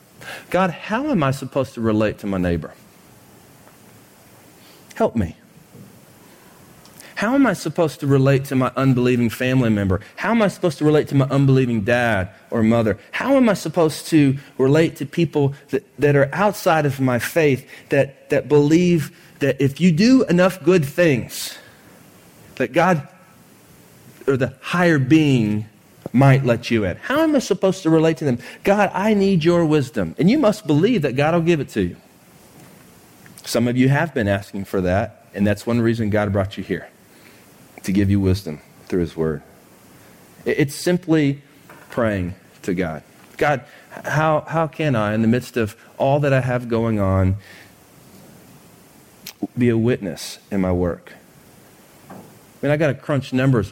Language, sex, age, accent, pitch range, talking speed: English, male, 40-59, American, 110-160 Hz, 170 wpm